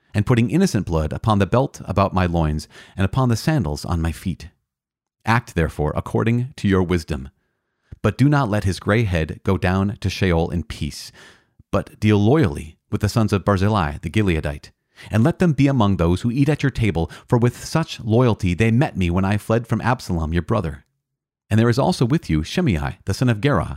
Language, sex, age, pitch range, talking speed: English, male, 40-59, 85-120 Hz, 205 wpm